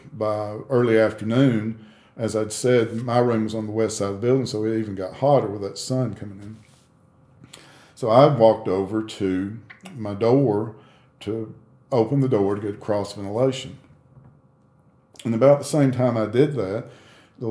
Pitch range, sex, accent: 105-125 Hz, male, American